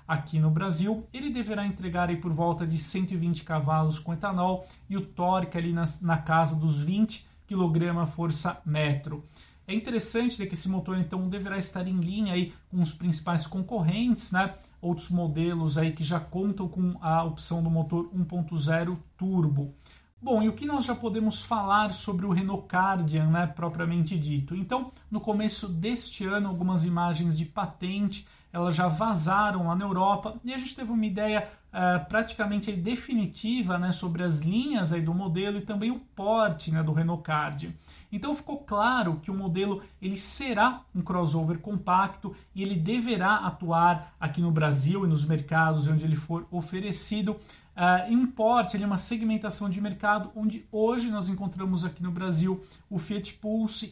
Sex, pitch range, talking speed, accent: male, 170-210 Hz, 170 wpm, Brazilian